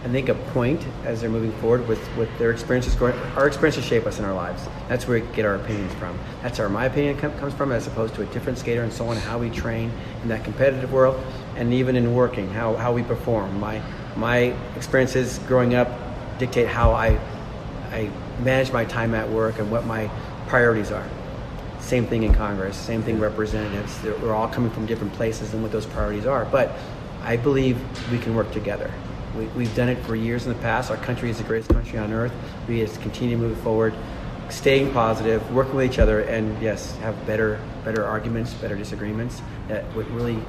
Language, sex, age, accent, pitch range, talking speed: English, male, 40-59, American, 110-125 Hz, 205 wpm